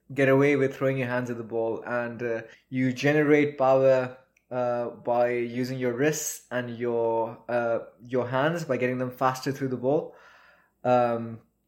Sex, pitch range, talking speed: male, 120-140 Hz, 165 wpm